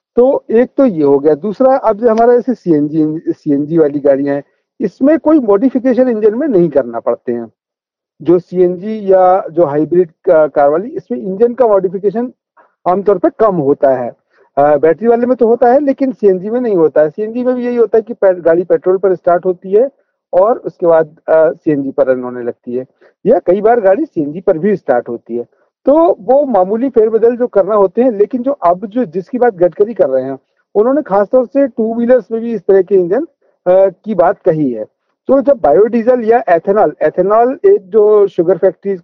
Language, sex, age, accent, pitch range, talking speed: Hindi, male, 50-69, native, 170-240 Hz, 200 wpm